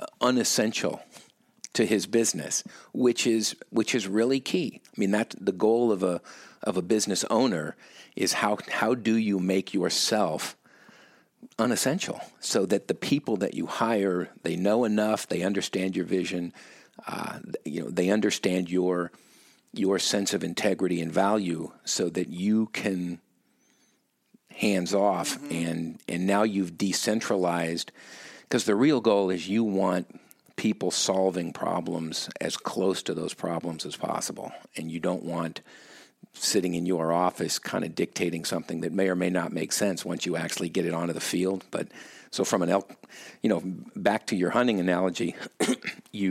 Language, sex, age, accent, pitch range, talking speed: English, male, 50-69, American, 85-105 Hz, 160 wpm